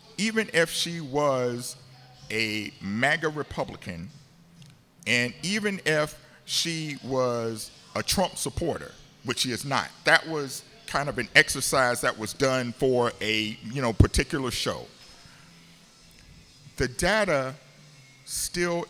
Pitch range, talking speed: 120-165 Hz, 120 wpm